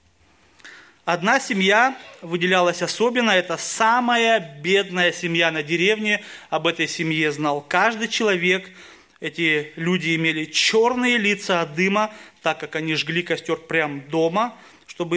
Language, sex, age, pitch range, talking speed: Russian, male, 30-49, 155-185 Hz, 125 wpm